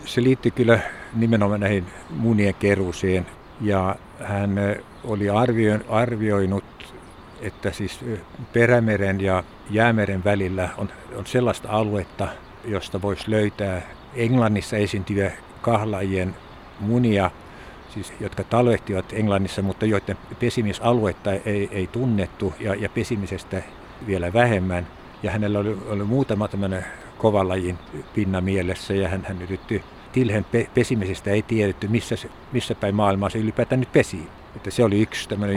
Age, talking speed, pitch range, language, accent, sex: 60-79, 125 wpm, 95-110 Hz, Finnish, native, male